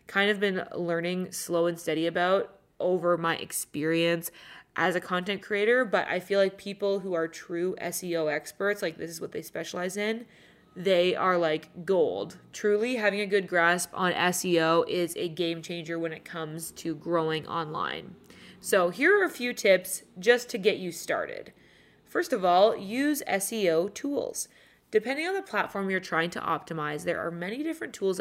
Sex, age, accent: female, 20-39, American